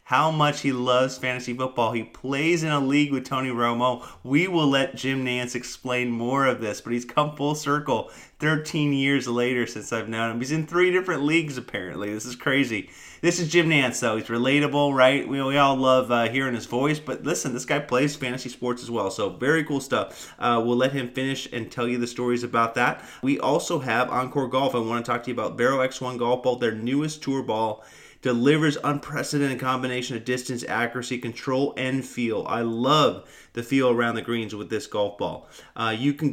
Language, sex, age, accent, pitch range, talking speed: English, male, 30-49, American, 120-140 Hz, 210 wpm